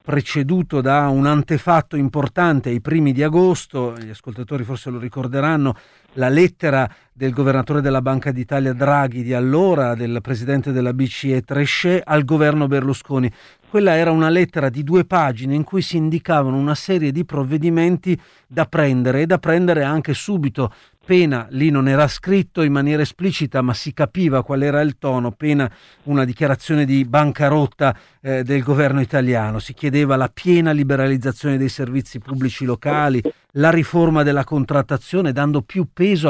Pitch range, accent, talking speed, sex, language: 130-155 Hz, native, 155 wpm, male, Italian